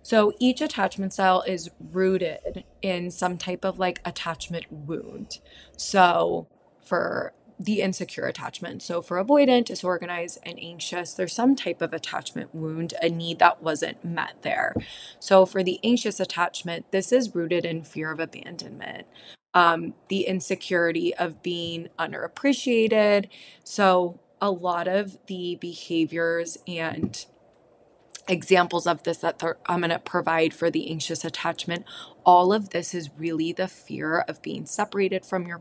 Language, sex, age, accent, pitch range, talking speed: English, female, 20-39, American, 165-190 Hz, 145 wpm